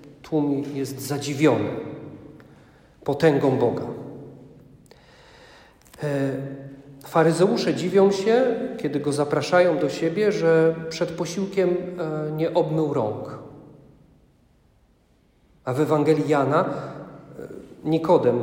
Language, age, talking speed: Polish, 40-59, 75 wpm